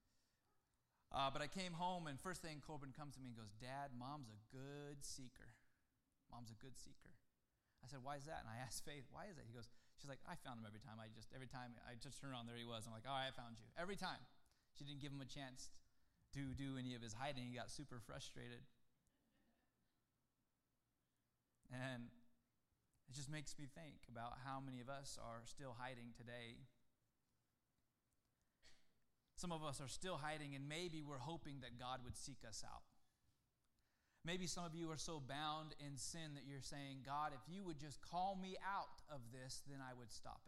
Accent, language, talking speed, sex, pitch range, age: American, English, 205 wpm, male, 125-170 Hz, 20-39